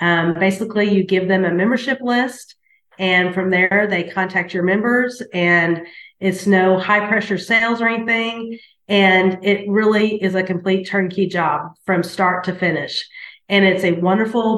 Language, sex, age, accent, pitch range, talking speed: English, female, 30-49, American, 120-190 Hz, 160 wpm